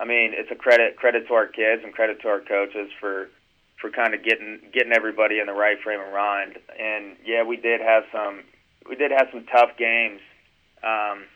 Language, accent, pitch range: English, American, 100-115 Hz